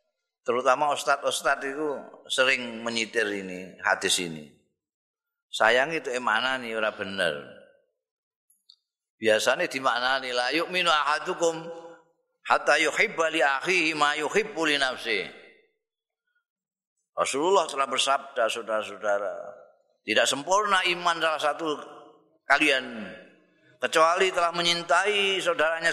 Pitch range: 125-185 Hz